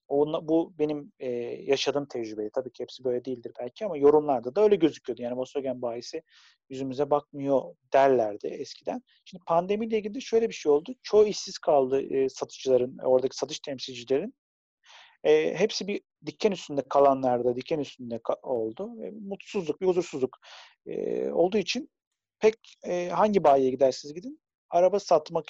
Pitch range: 135-195 Hz